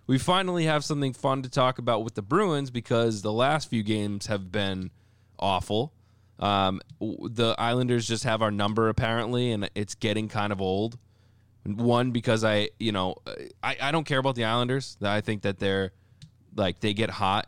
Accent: American